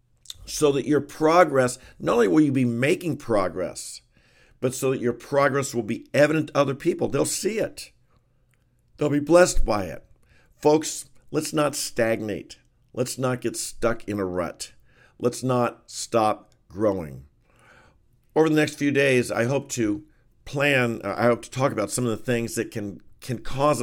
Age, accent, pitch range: 50-69, American, 115-130 Hz